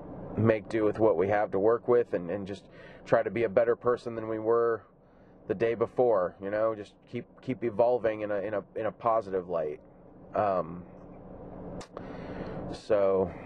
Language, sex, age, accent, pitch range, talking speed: English, male, 30-49, American, 105-120 Hz, 180 wpm